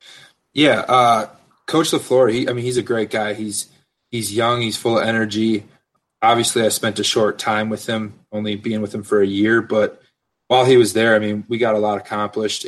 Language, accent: English, American